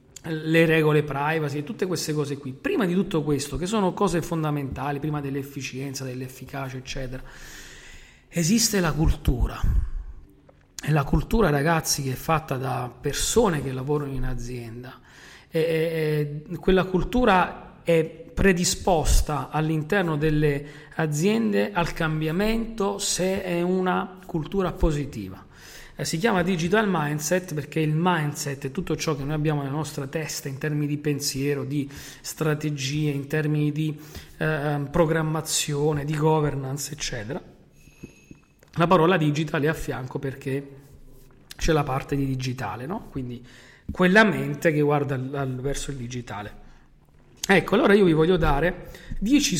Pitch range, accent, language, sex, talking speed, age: 135-170 Hz, native, Italian, male, 130 wpm, 40-59